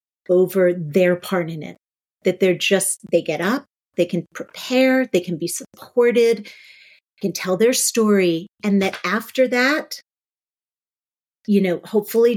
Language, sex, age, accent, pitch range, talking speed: English, female, 40-59, American, 175-205 Hz, 140 wpm